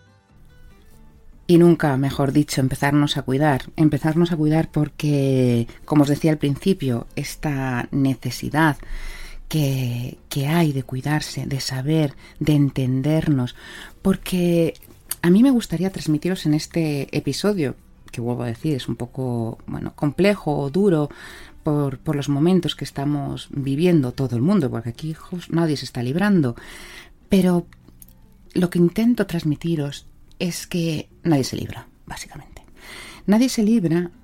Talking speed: 135 wpm